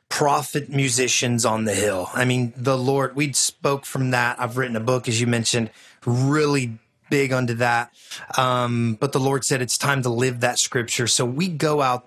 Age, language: 30-49, English